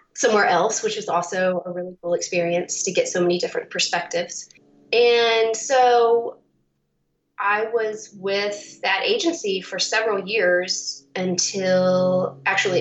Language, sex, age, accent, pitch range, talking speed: English, female, 30-49, American, 175-235 Hz, 125 wpm